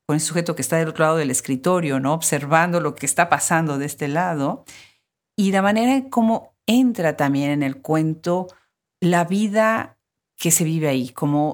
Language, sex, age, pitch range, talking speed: Spanish, female, 50-69, 140-190 Hz, 180 wpm